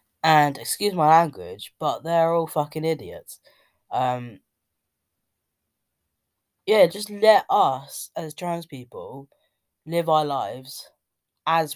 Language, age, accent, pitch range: English, 10-29, British, 130-170 Hz